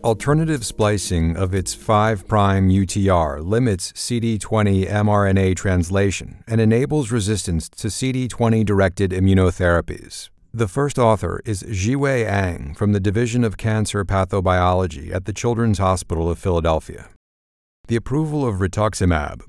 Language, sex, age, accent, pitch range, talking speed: English, male, 50-69, American, 90-110 Hz, 115 wpm